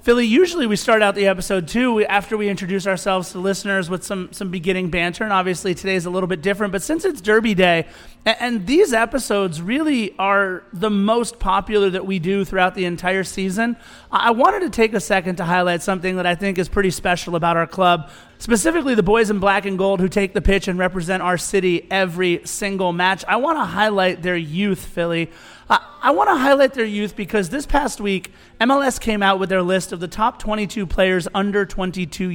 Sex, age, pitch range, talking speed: male, 30-49, 185-215 Hz, 210 wpm